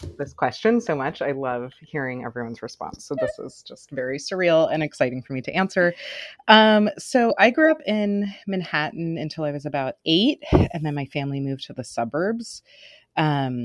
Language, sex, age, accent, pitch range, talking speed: English, female, 30-49, American, 130-175 Hz, 185 wpm